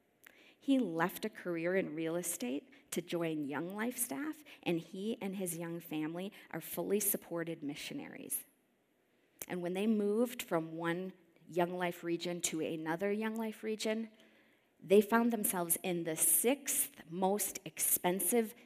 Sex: female